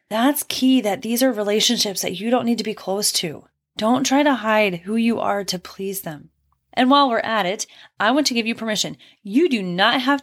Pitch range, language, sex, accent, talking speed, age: 200-265 Hz, English, female, American, 230 wpm, 10-29